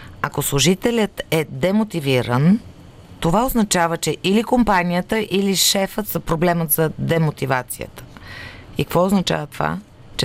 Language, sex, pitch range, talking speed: Bulgarian, female, 135-190 Hz, 115 wpm